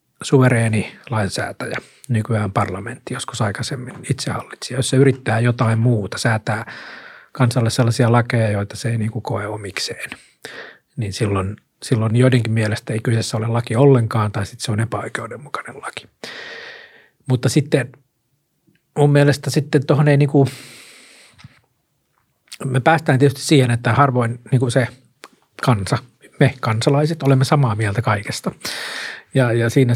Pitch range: 115-135 Hz